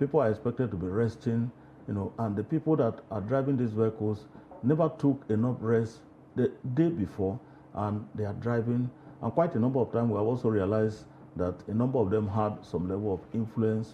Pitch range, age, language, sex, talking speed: 100-135 Hz, 50-69, English, male, 200 wpm